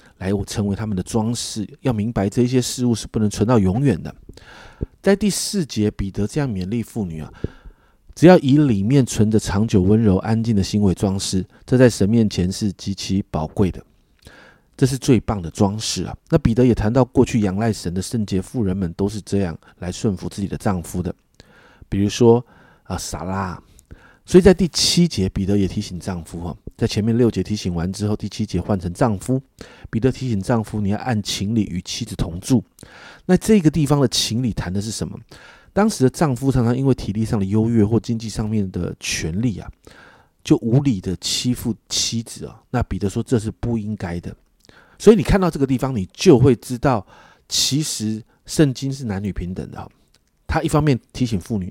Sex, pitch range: male, 95-125 Hz